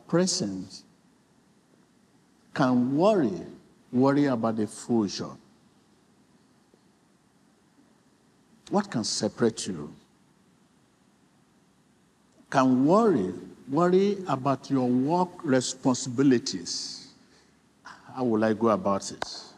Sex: male